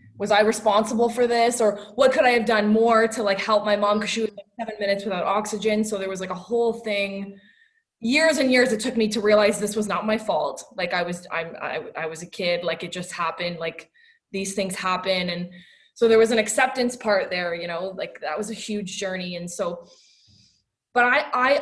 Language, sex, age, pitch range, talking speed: English, female, 20-39, 185-225 Hz, 230 wpm